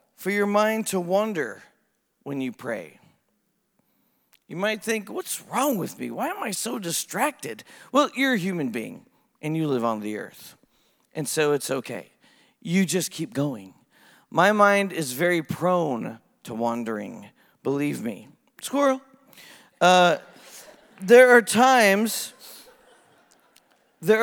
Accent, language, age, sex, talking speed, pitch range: American, English, 40-59, male, 135 wpm, 180-260 Hz